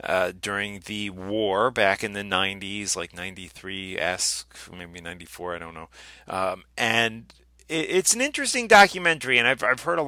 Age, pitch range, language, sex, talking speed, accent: 30-49, 95-125 Hz, English, male, 155 wpm, American